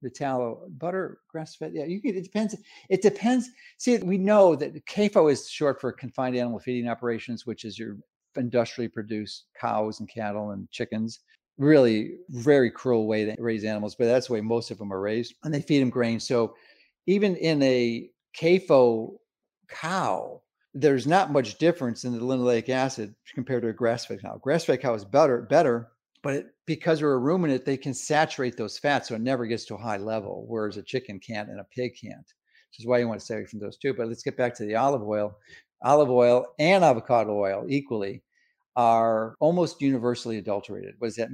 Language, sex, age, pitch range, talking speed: English, male, 50-69, 115-150 Hz, 200 wpm